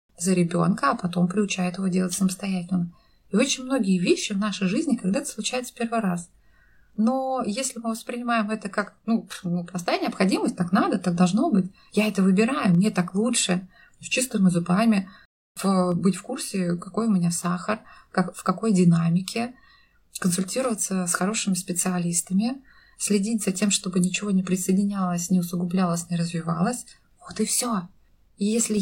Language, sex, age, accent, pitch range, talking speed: Russian, female, 20-39, native, 180-215 Hz, 155 wpm